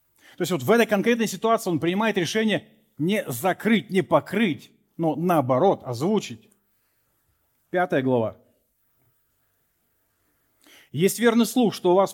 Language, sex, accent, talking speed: Russian, male, native, 125 wpm